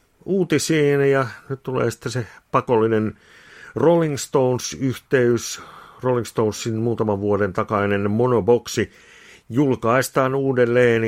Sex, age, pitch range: male, 60-79, 95-115 Hz